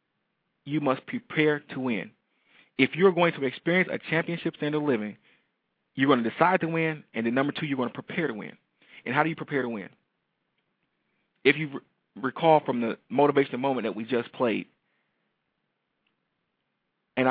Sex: male